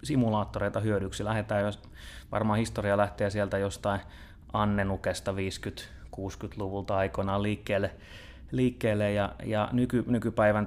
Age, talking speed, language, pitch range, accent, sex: 30-49, 80 wpm, Finnish, 95-110 Hz, native, male